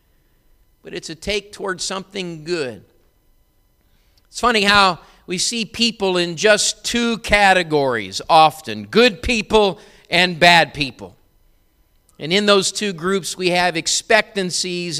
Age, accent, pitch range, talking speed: 50-69, American, 155-200 Hz, 125 wpm